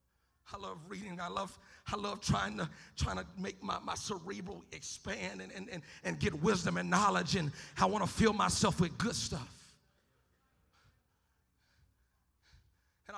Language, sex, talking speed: English, male, 155 wpm